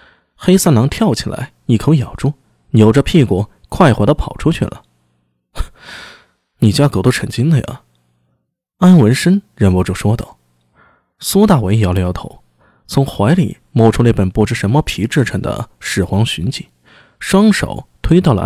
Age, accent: 20-39, native